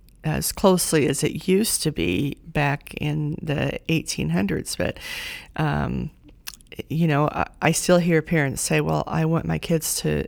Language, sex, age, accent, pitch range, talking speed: English, female, 40-59, American, 145-165 Hz, 160 wpm